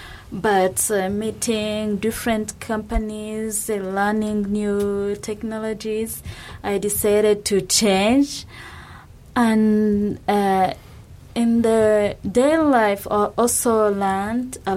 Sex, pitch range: female, 195-230 Hz